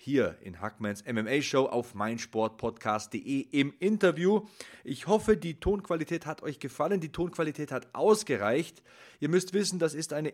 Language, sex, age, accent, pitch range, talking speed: German, male, 30-49, German, 125-165 Hz, 145 wpm